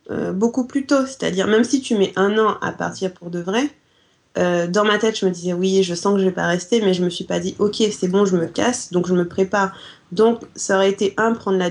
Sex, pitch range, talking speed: female, 185-215 Hz, 285 wpm